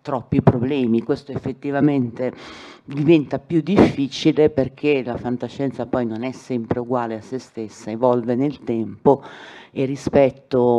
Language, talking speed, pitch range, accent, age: Italian, 130 wpm, 115-145 Hz, native, 40-59